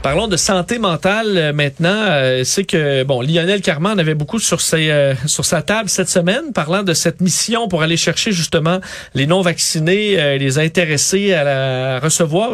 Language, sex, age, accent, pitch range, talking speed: French, male, 40-59, Canadian, 150-190 Hz, 185 wpm